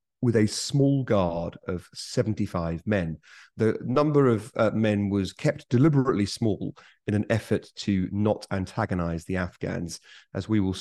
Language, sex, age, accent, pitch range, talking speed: English, male, 40-59, British, 95-125 Hz, 150 wpm